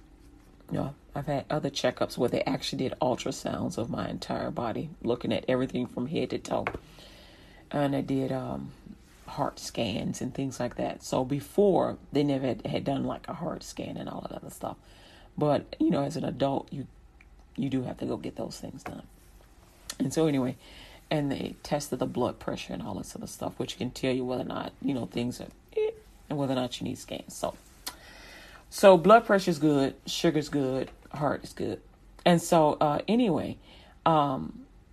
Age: 40-59